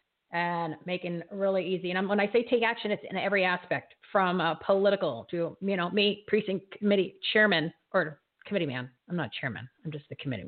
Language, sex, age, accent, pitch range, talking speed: English, female, 40-59, American, 175-205 Hz, 200 wpm